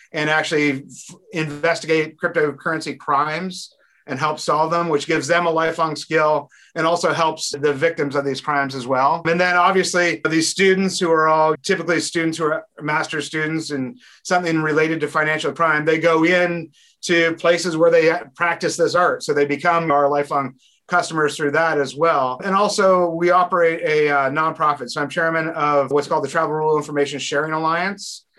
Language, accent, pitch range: English, American, 145-170 Hz